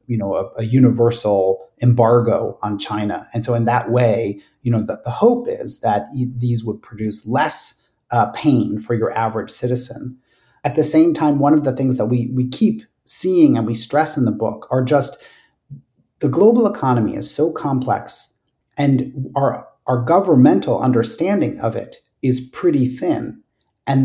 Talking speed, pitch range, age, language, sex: 170 wpm, 115-140 Hz, 40-59, English, male